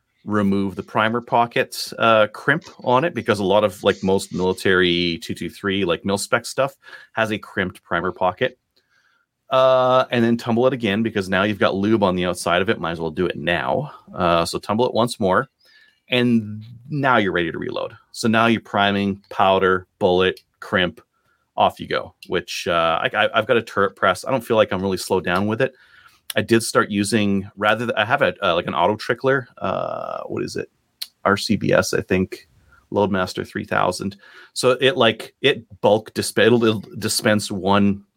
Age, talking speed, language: 30-49, 185 wpm, English